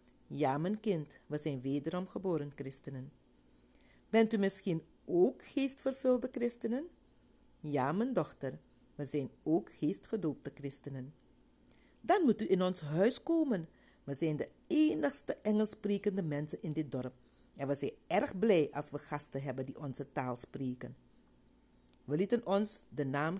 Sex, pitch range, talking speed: female, 135-195 Hz, 145 wpm